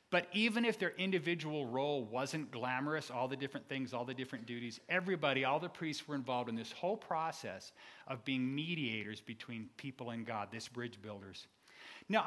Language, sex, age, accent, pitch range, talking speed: English, male, 40-59, American, 130-180 Hz, 180 wpm